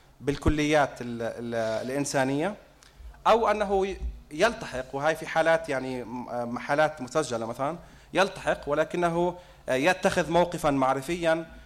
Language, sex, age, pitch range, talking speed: English, male, 30-49, 120-150 Hz, 85 wpm